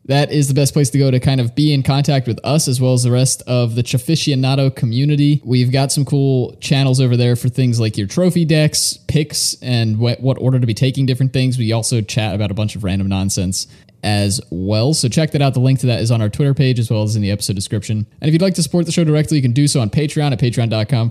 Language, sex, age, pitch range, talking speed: English, male, 20-39, 115-145 Hz, 265 wpm